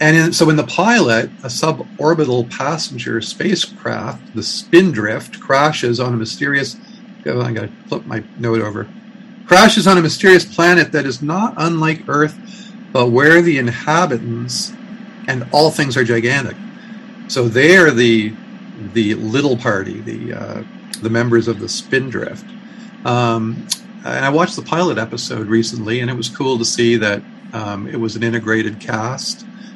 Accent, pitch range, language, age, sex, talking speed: American, 115-180 Hz, English, 50-69, male, 145 wpm